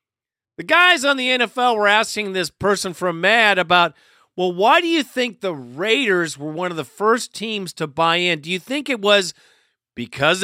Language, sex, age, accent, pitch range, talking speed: English, male, 50-69, American, 165-230 Hz, 195 wpm